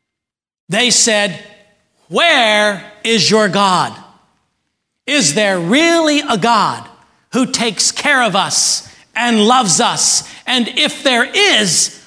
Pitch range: 180-235 Hz